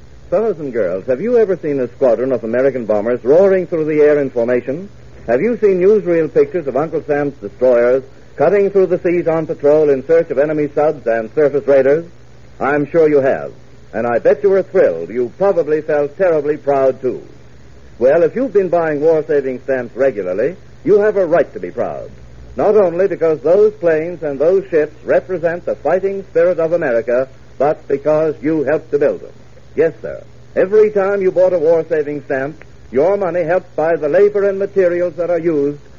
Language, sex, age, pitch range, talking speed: English, male, 60-79, 140-185 Hz, 190 wpm